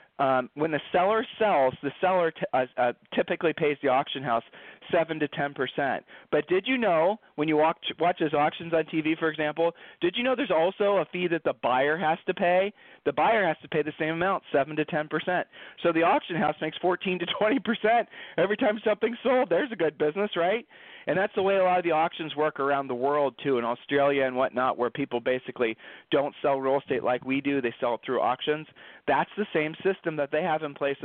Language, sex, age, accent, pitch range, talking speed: English, male, 40-59, American, 135-180 Hz, 225 wpm